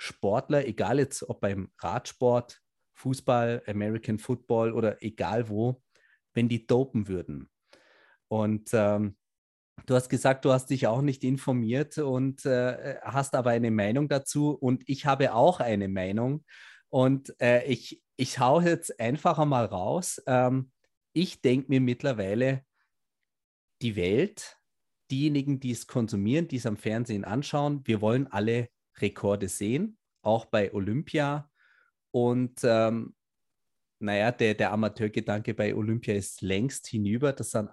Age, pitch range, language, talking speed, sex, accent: 30-49, 115-135 Hz, German, 135 wpm, male, German